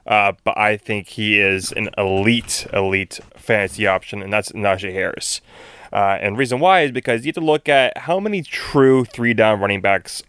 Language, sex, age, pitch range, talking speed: English, male, 20-39, 105-125 Hz, 185 wpm